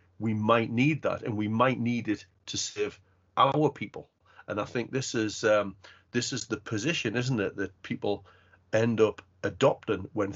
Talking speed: 180 wpm